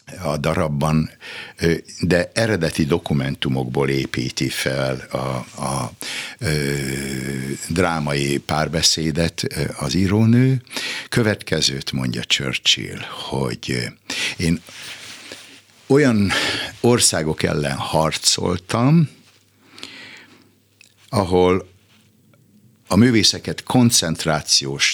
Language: Hungarian